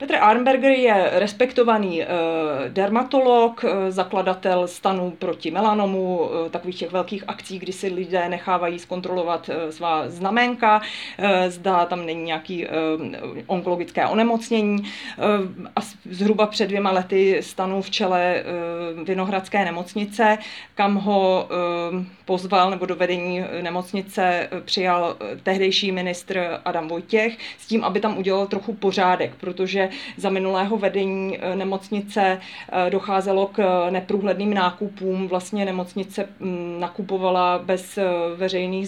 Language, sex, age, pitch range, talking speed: Czech, female, 30-49, 180-205 Hz, 105 wpm